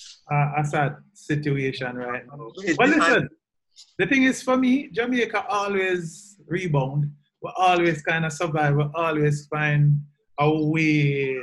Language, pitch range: English, 135-175 Hz